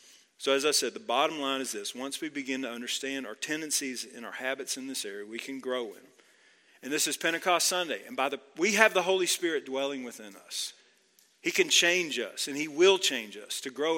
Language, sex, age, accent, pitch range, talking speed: English, male, 40-59, American, 135-190 Hz, 230 wpm